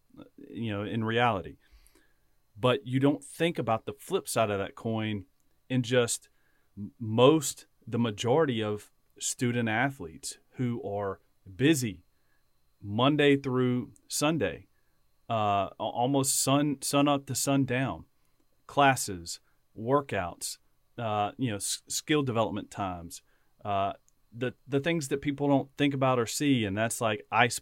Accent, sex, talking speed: American, male, 130 wpm